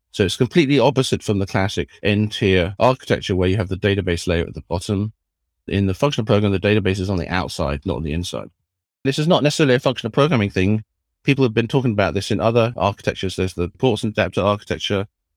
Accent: British